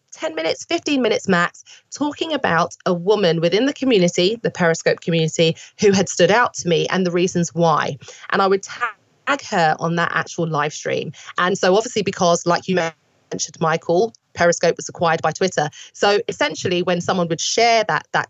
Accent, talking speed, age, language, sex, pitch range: British, 185 wpm, 30-49, English, female, 170-225 Hz